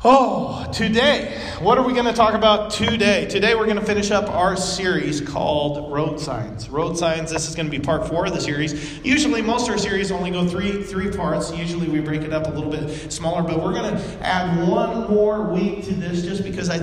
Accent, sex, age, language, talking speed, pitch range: American, male, 40-59, English, 230 wpm, 160-195 Hz